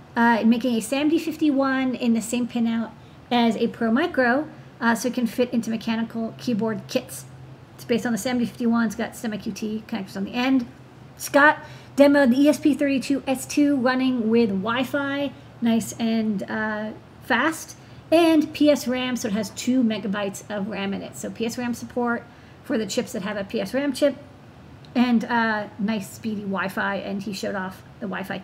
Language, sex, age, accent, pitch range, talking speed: English, female, 40-59, American, 215-255 Hz, 170 wpm